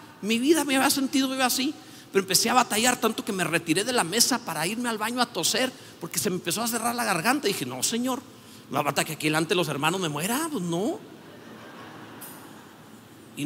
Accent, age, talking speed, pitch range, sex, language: Mexican, 50-69, 225 wpm, 170-255 Hz, male, Spanish